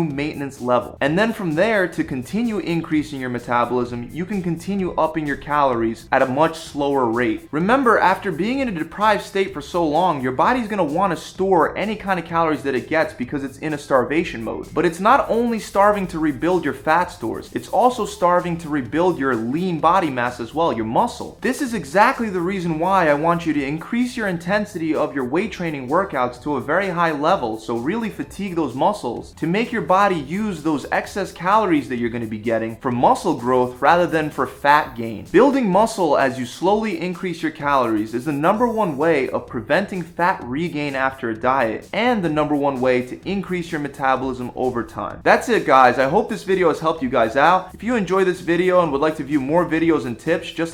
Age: 20-39